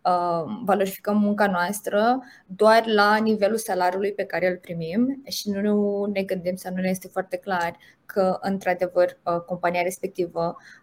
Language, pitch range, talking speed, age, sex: Romanian, 185-220 Hz, 140 wpm, 20-39, female